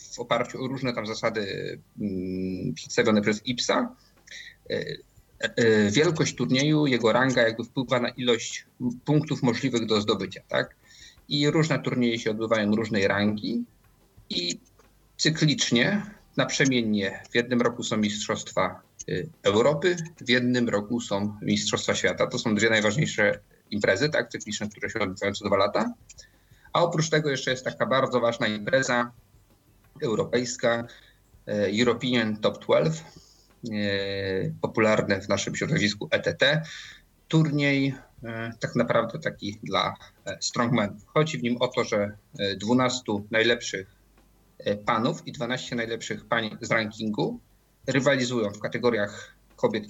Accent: native